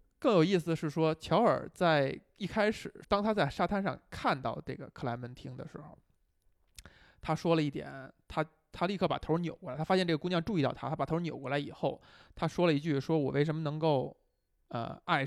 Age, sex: 20-39, male